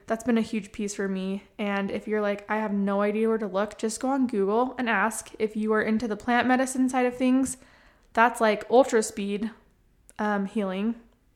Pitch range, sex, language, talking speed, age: 205-230 Hz, female, English, 210 wpm, 20-39